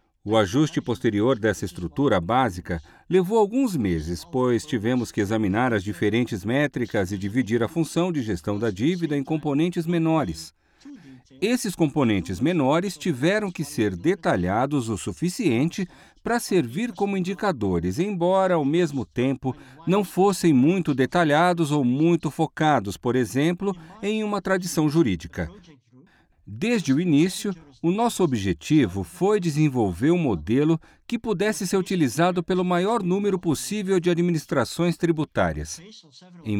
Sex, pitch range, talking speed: male, 120-180 Hz, 130 wpm